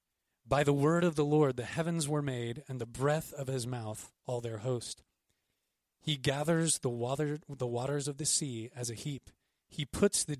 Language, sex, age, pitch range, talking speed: English, male, 30-49, 125-150 Hz, 195 wpm